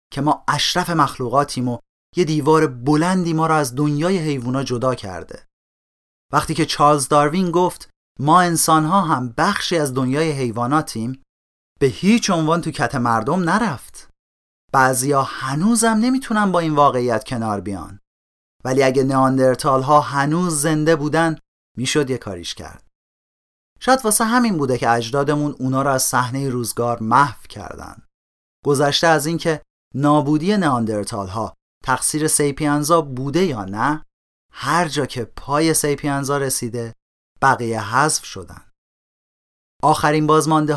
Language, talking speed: Persian, 125 wpm